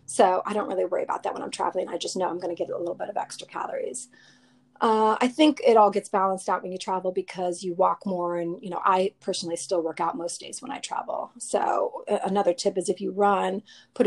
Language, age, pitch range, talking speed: English, 30-49, 185-225 Hz, 255 wpm